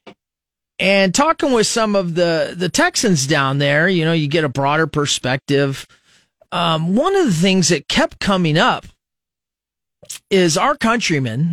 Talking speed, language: 150 wpm, English